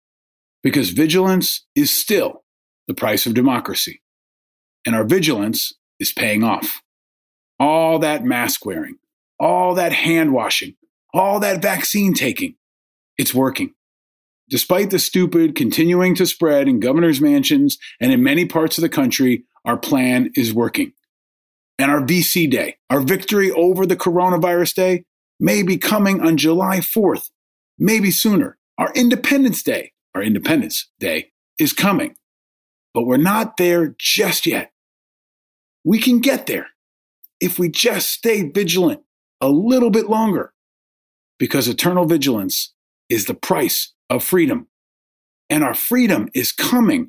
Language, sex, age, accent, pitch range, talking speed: English, male, 40-59, American, 165-260 Hz, 135 wpm